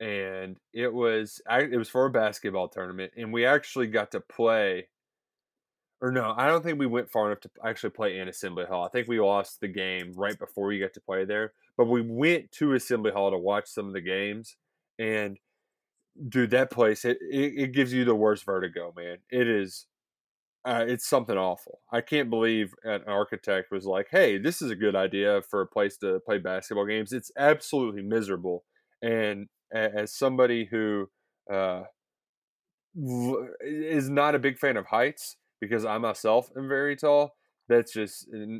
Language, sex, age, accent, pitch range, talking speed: English, male, 20-39, American, 100-130 Hz, 185 wpm